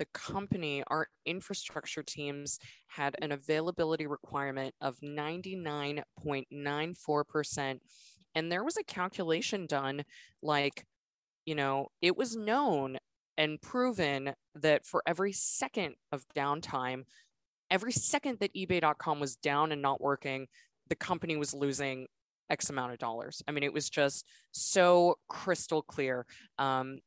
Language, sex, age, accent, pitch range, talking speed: English, female, 20-39, American, 140-165 Hz, 125 wpm